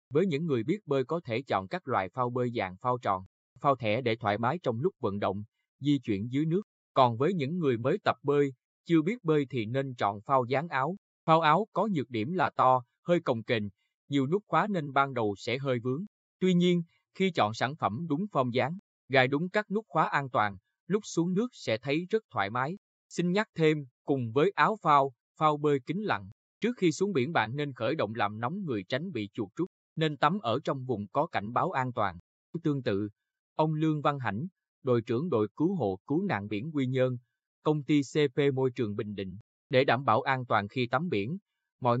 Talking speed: 220 wpm